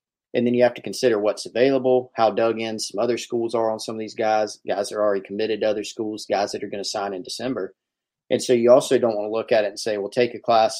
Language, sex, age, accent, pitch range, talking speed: English, male, 30-49, American, 105-125 Hz, 290 wpm